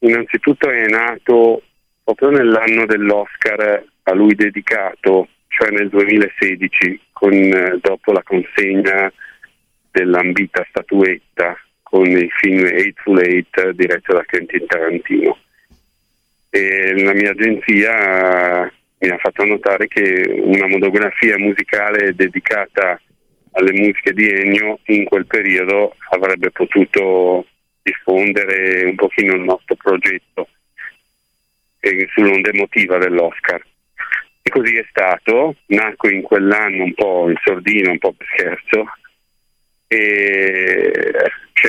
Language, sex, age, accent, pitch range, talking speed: Italian, male, 40-59, native, 95-115 Hz, 110 wpm